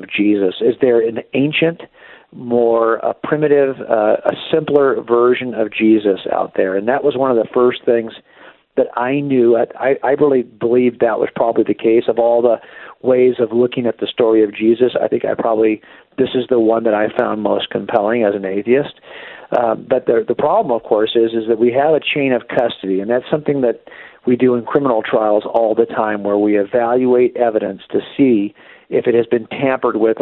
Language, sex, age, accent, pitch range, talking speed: English, male, 50-69, American, 110-135 Hz, 205 wpm